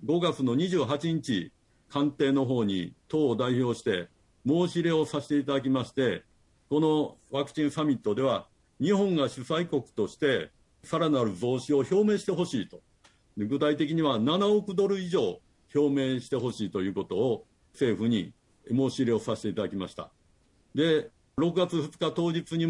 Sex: male